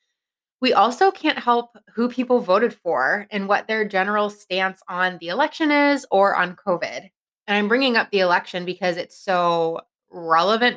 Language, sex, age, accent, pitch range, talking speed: English, female, 20-39, American, 180-230 Hz, 165 wpm